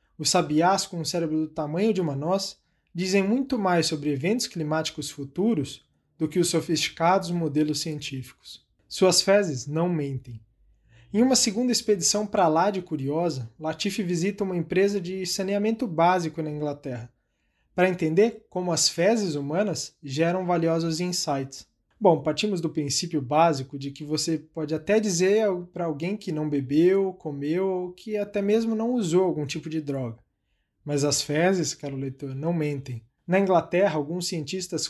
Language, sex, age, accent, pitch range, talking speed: Portuguese, male, 20-39, Brazilian, 150-185 Hz, 155 wpm